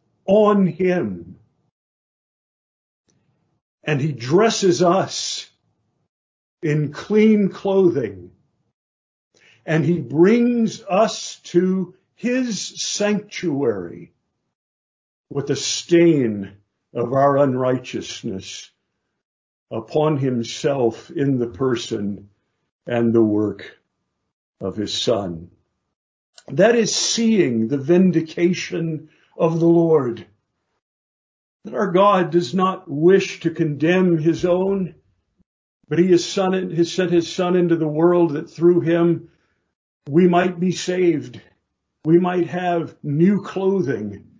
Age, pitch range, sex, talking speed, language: 50-69, 120-180 Hz, male, 95 wpm, English